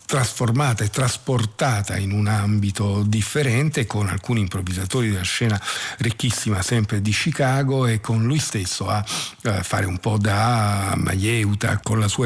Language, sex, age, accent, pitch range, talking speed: Italian, male, 50-69, native, 100-120 Hz, 145 wpm